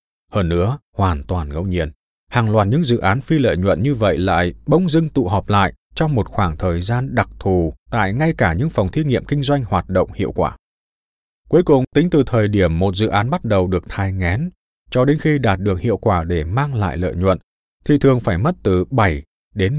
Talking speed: 225 wpm